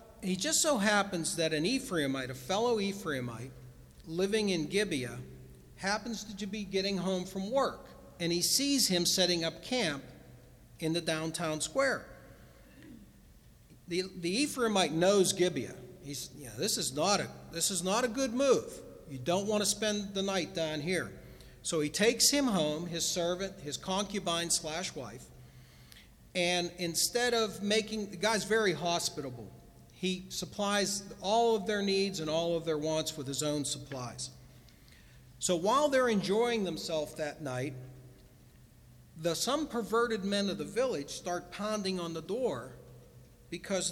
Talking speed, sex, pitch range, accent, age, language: 150 wpm, male, 150-210 Hz, American, 50-69, English